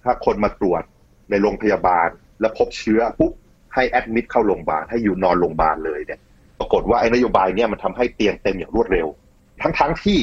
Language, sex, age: Thai, male, 30-49